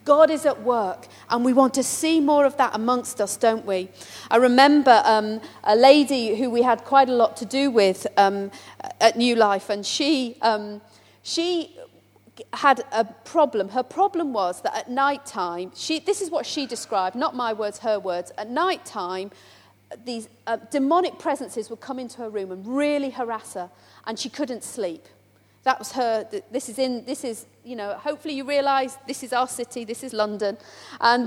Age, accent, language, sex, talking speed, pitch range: 40-59, British, English, female, 190 wpm, 215-275 Hz